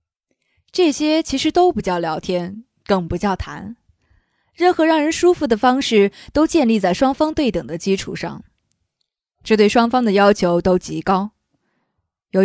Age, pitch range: 20-39, 185-265 Hz